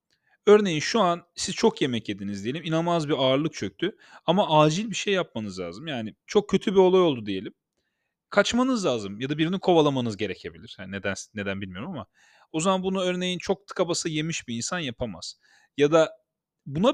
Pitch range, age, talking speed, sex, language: 115-185 Hz, 40-59, 175 wpm, male, Turkish